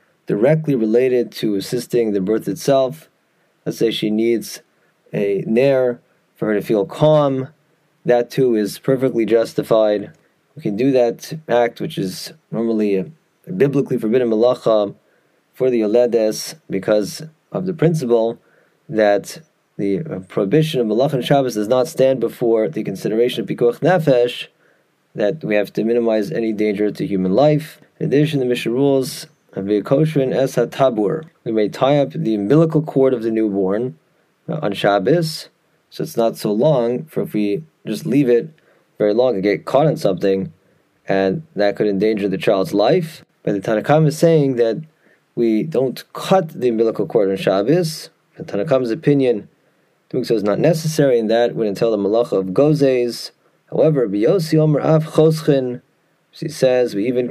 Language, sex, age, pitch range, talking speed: English, male, 30-49, 110-155 Hz, 150 wpm